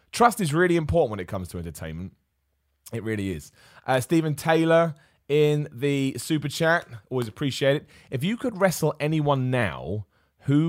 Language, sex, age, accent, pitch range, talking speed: English, male, 30-49, British, 105-160 Hz, 165 wpm